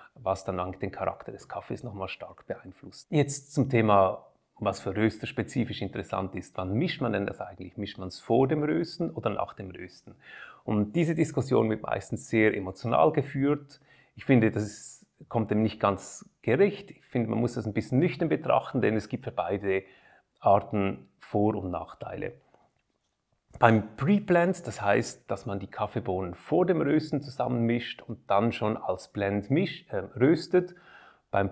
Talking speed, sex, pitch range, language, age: 170 wpm, male, 100-130 Hz, German, 30-49